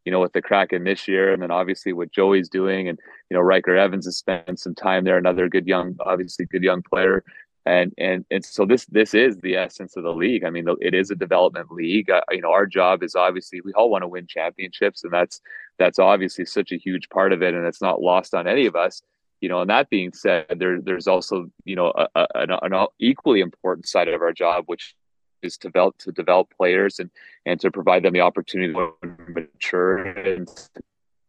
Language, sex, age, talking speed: English, male, 30-49, 230 wpm